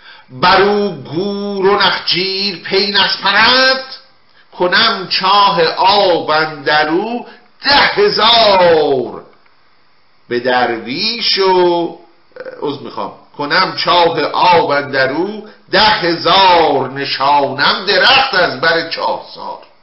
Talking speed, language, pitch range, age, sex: 90 wpm, Persian, 160-225 Hz, 50-69, male